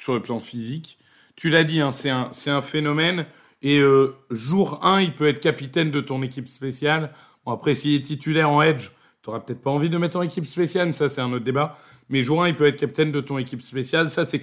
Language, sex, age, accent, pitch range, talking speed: French, male, 40-59, French, 135-170 Hz, 250 wpm